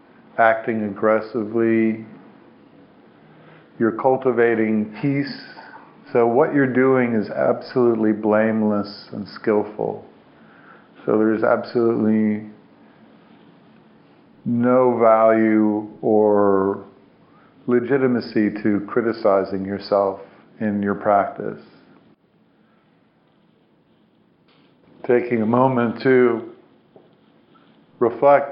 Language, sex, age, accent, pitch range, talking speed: English, male, 50-69, American, 105-120 Hz, 65 wpm